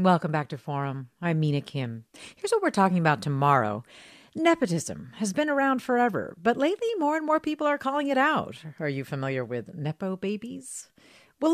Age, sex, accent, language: 40-59, female, American, English